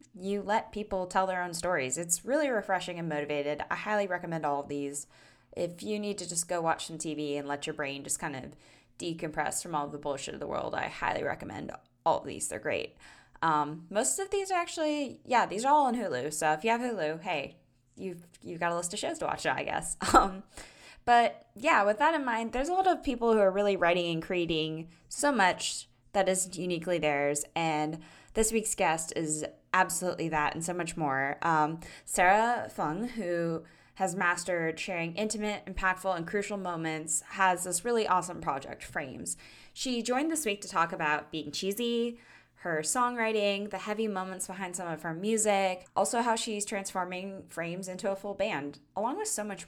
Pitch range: 160-210 Hz